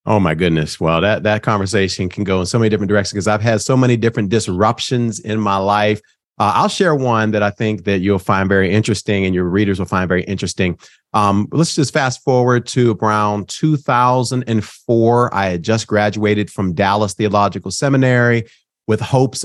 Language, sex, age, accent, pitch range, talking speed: English, male, 40-59, American, 100-125 Hz, 190 wpm